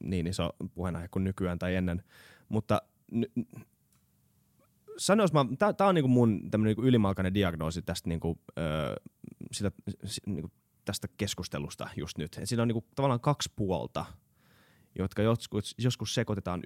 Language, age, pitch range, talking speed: Finnish, 20-39, 85-115 Hz, 95 wpm